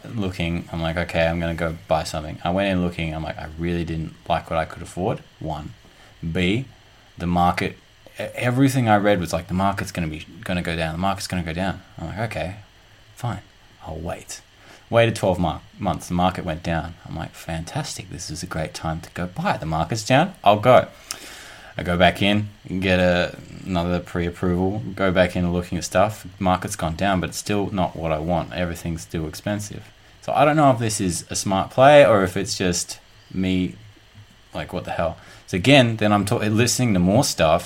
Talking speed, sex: 205 wpm, male